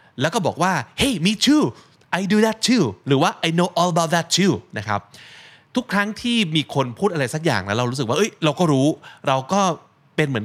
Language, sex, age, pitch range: Thai, male, 20-39, 110-155 Hz